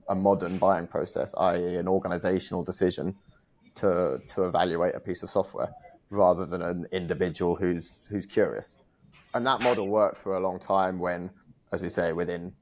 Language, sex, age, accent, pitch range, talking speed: English, male, 20-39, British, 90-100 Hz, 165 wpm